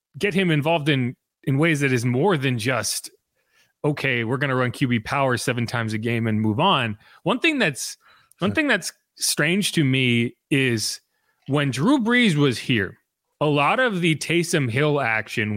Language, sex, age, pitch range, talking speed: English, male, 30-49, 125-170 Hz, 175 wpm